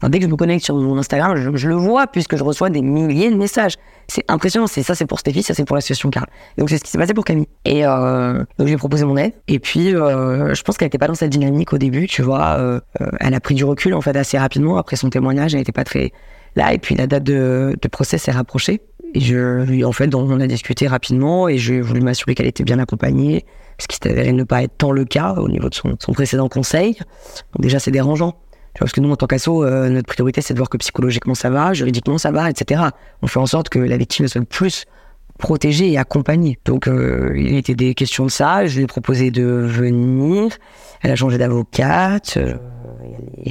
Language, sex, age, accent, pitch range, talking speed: French, female, 20-39, French, 130-165 Hz, 250 wpm